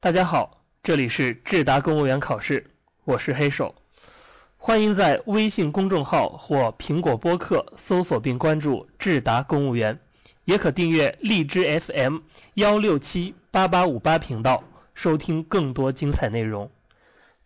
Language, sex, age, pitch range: Chinese, male, 30-49, 135-190 Hz